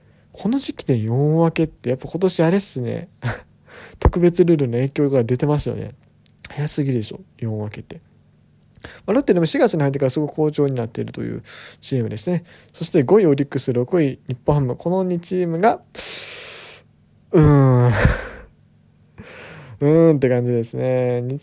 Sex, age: male, 20-39